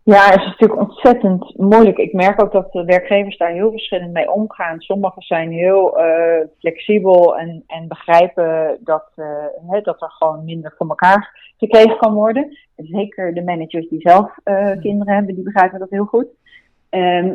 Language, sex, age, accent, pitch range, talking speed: Dutch, female, 30-49, Dutch, 165-200 Hz, 175 wpm